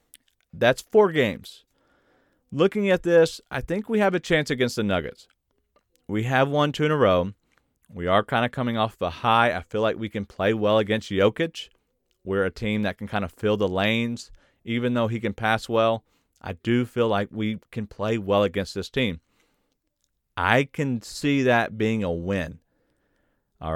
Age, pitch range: 40-59, 100-130 Hz